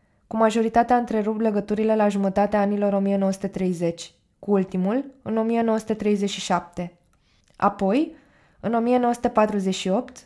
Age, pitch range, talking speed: 20-39, 195-225 Hz, 95 wpm